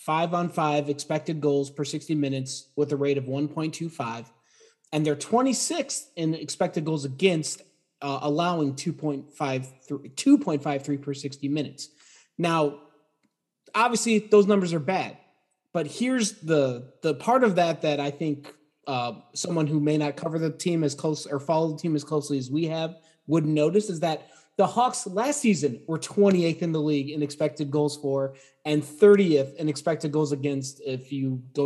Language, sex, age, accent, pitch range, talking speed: English, male, 30-49, American, 145-180 Hz, 170 wpm